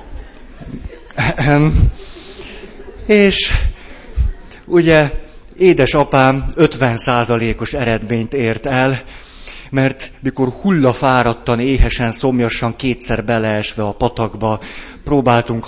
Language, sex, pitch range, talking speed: Hungarian, male, 110-135 Hz, 65 wpm